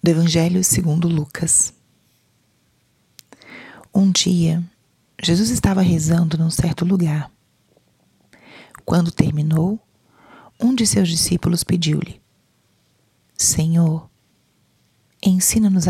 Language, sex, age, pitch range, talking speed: Portuguese, female, 30-49, 160-185 Hz, 80 wpm